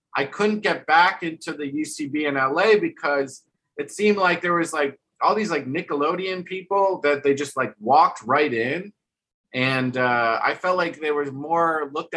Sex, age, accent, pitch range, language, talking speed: male, 30-49, American, 135-170 Hz, English, 180 wpm